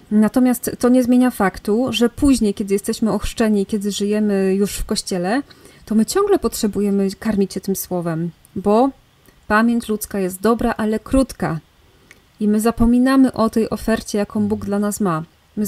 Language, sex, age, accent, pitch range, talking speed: Polish, female, 30-49, native, 205-235 Hz, 160 wpm